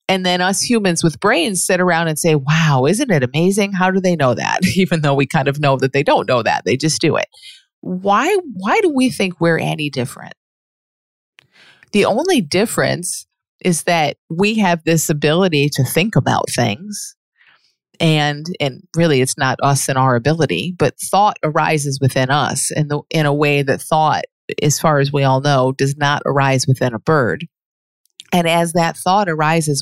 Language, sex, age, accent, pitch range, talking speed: English, female, 30-49, American, 140-180 Hz, 185 wpm